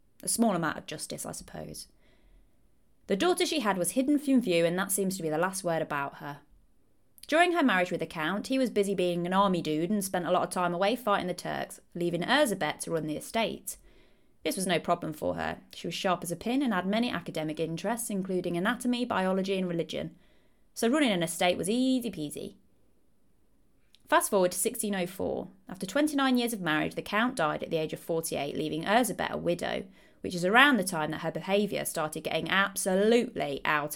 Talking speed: 205 wpm